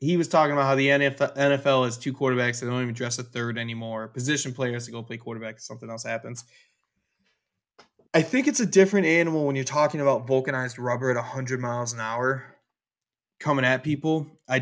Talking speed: 195 wpm